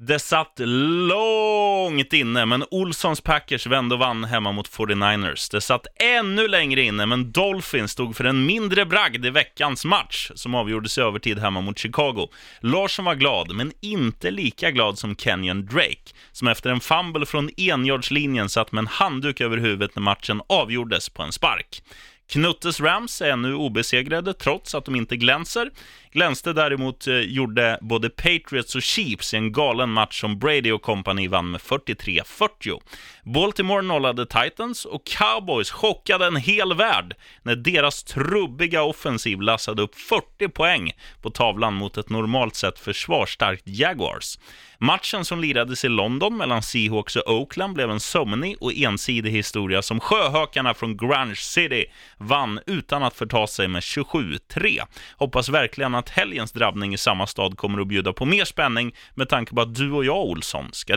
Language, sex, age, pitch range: Swedish, male, 30-49, 110-155 Hz